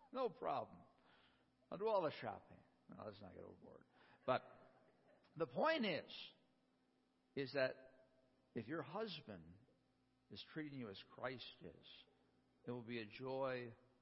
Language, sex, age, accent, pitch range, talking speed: English, male, 60-79, American, 110-140 Hz, 135 wpm